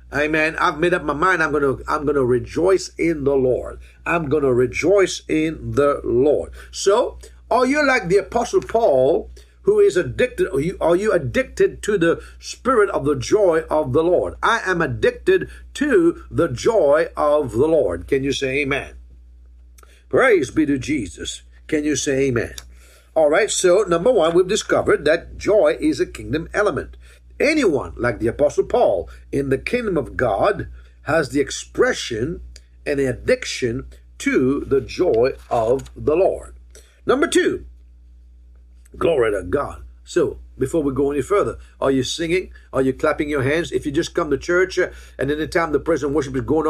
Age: 60-79